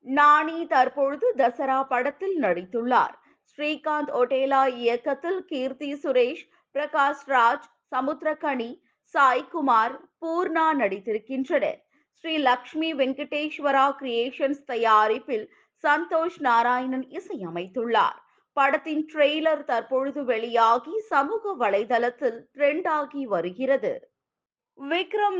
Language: Tamil